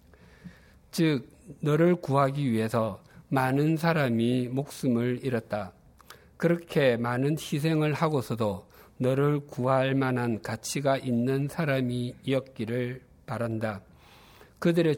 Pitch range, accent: 110-145 Hz, native